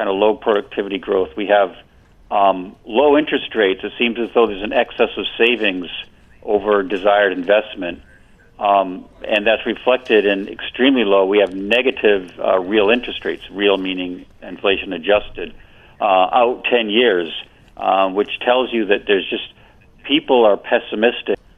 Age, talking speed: 50-69, 155 wpm